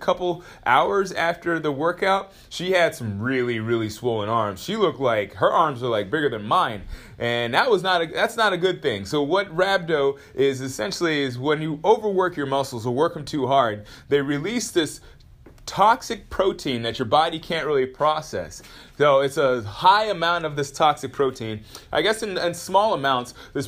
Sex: male